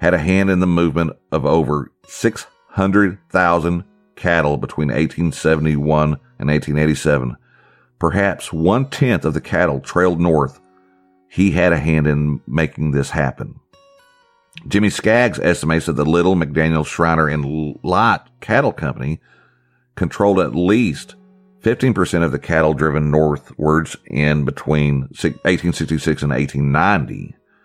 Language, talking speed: English, 120 wpm